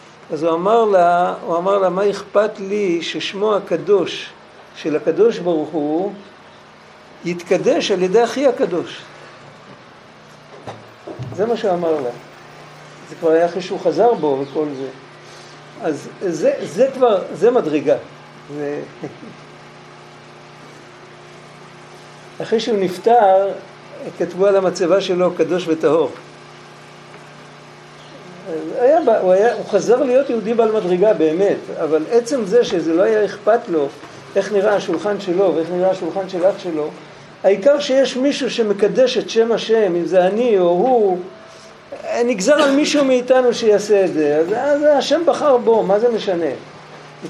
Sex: male